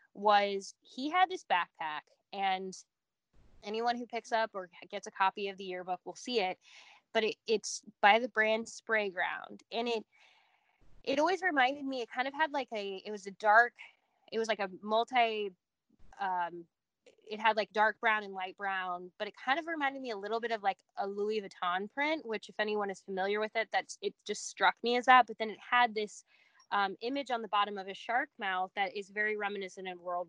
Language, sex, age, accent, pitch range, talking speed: English, female, 10-29, American, 200-255 Hz, 210 wpm